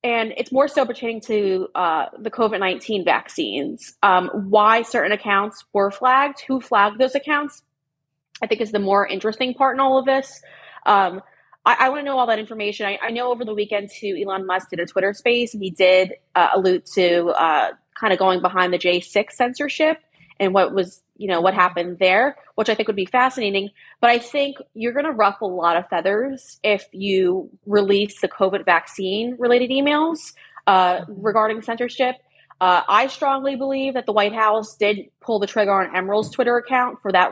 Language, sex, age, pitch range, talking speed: English, female, 20-39, 185-245 Hz, 190 wpm